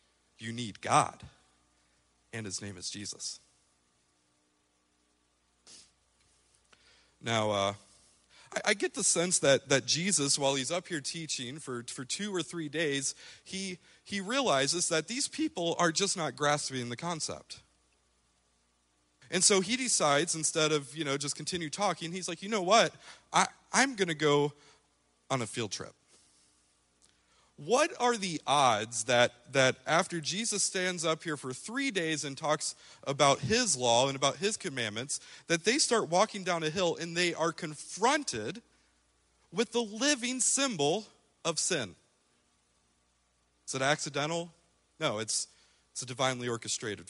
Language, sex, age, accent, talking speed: English, male, 40-59, American, 145 wpm